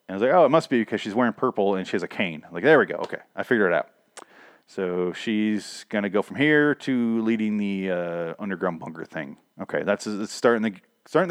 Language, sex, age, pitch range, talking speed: English, male, 30-49, 100-130 Hz, 240 wpm